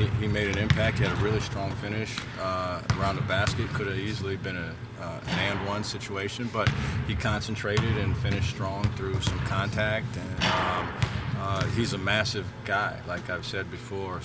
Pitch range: 100-120 Hz